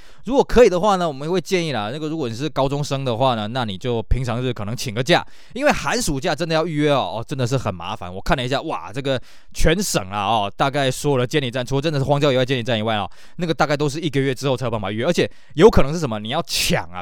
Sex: male